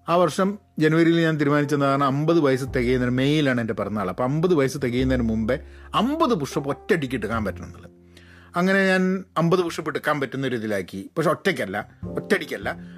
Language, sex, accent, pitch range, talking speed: Malayalam, male, native, 125-180 Hz, 140 wpm